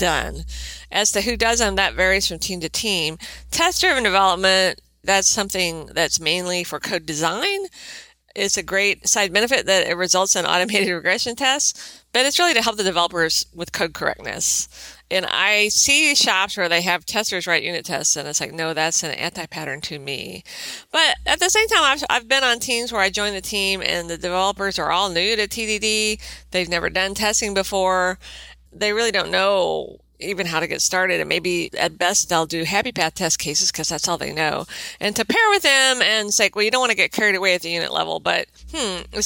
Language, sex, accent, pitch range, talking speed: English, female, American, 170-220 Hz, 210 wpm